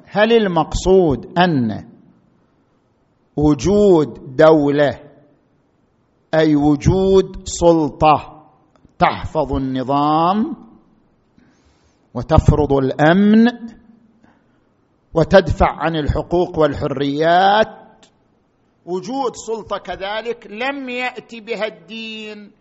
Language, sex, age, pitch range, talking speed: Arabic, male, 50-69, 180-245 Hz, 60 wpm